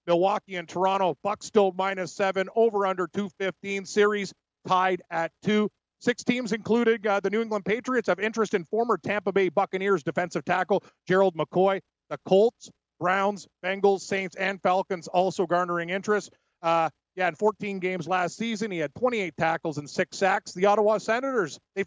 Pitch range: 180-200 Hz